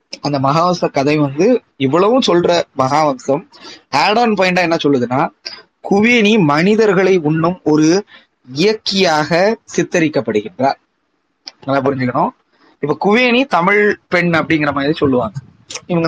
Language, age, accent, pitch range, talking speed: Tamil, 20-39, native, 130-160 Hz, 100 wpm